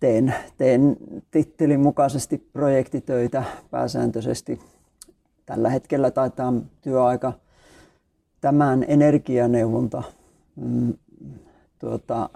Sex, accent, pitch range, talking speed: male, native, 115-130 Hz, 65 wpm